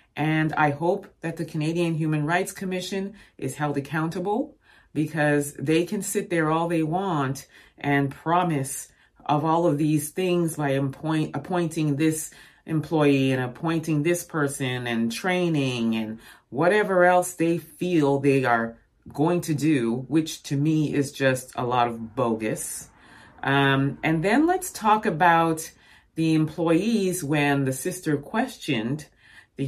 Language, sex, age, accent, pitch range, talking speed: English, female, 30-49, American, 130-175 Hz, 140 wpm